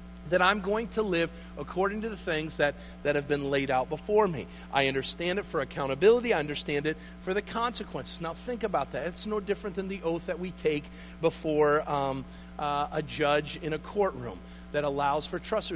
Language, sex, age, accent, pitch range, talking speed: English, male, 40-59, American, 145-195 Hz, 200 wpm